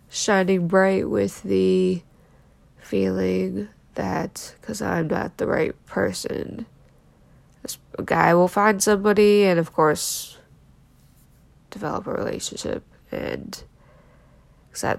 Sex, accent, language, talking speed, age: female, American, English, 100 wpm, 20-39